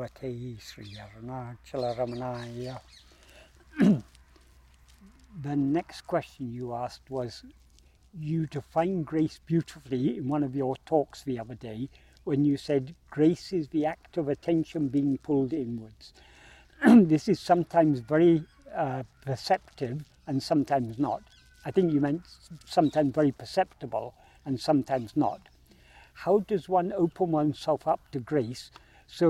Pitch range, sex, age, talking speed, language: 130-170 Hz, male, 60-79, 120 wpm, English